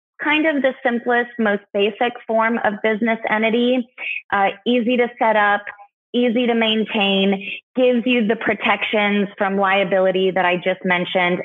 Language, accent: English, American